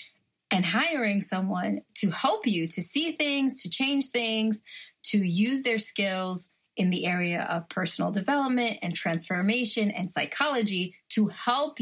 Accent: American